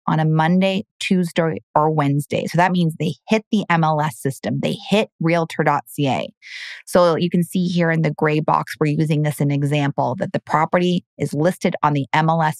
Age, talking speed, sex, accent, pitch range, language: 30-49, 190 wpm, female, American, 155-185 Hz, English